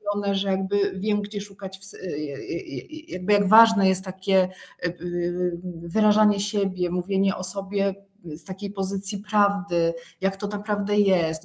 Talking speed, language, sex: 120 wpm, Polish, female